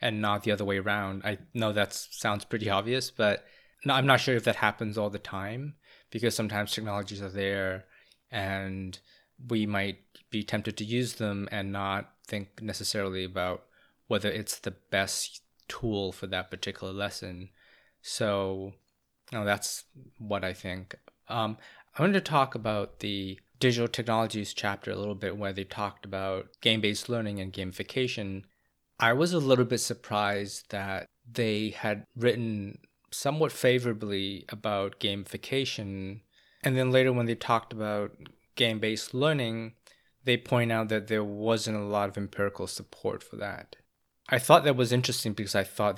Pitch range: 100-120 Hz